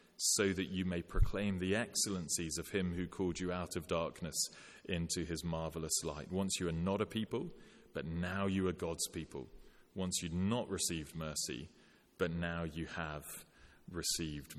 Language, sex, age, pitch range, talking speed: English, male, 30-49, 85-100 Hz, 175 wpm